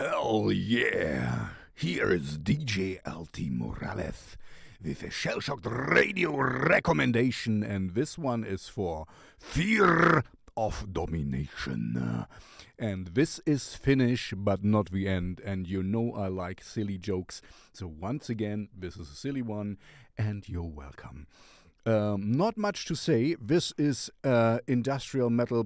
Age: 50-69